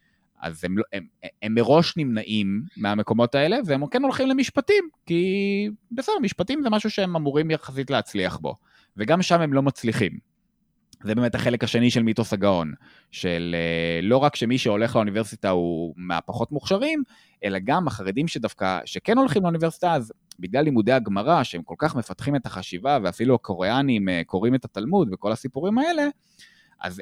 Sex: male